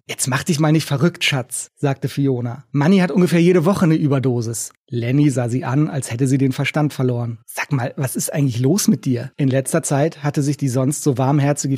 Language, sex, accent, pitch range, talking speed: German, male, German, 135-155 Hz, 220 wpm